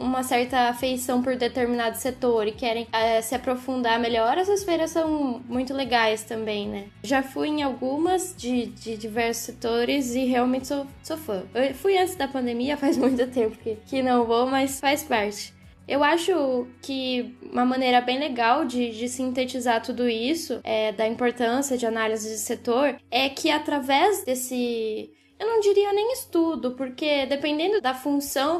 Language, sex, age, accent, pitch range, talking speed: Portuguese, female, 10-29, Brazilian, 240-310 Hz, 160 wpm